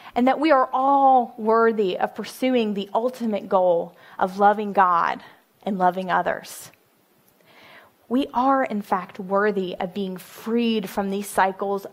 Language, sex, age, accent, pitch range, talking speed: English, female, 20-39, American, 195-255 Hz, 140 wpm